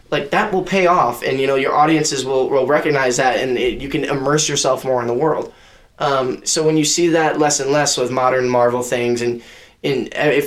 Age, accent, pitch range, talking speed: 10-29, American, 130-165 Hz, 230 wpm